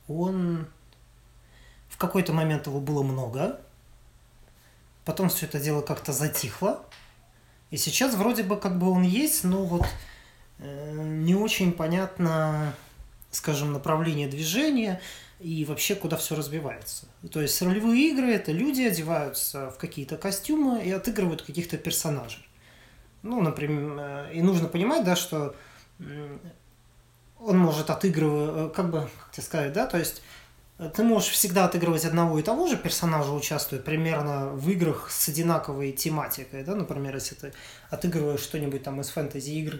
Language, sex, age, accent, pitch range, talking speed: Russian, male, 20-39, native, 140-175 Hz, 145 wpm